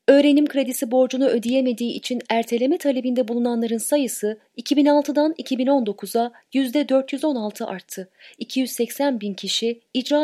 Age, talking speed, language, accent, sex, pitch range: 30-49, 100 wpm, Turkish, native, female, 200-275 Hz